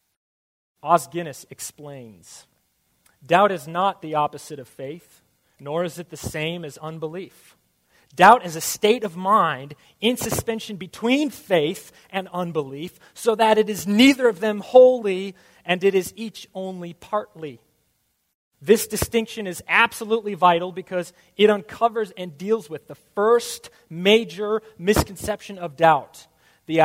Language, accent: English, American